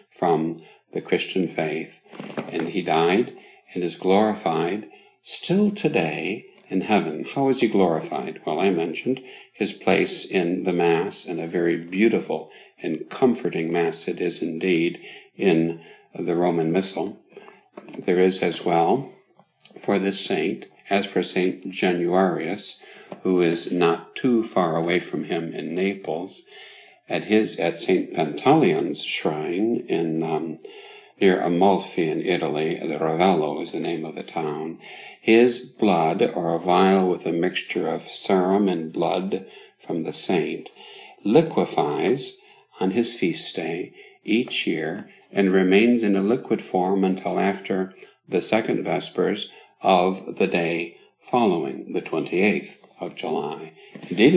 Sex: male